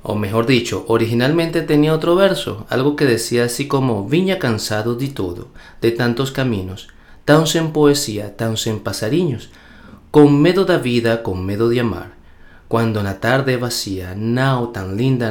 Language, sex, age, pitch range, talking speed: Spanish, male, 30-49, 95-145 Hz, 160 wpm